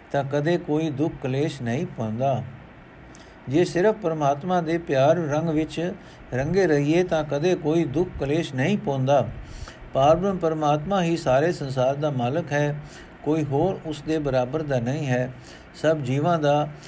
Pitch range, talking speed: 135-175 Hz, 150 wpm